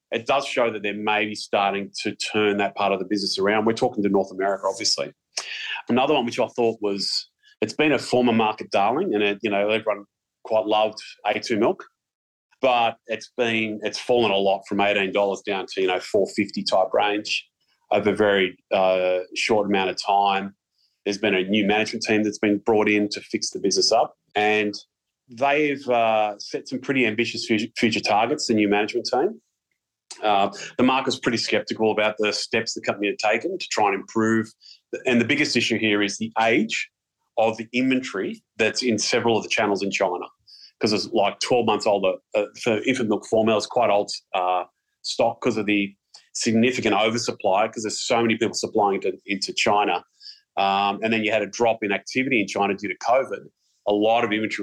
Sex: male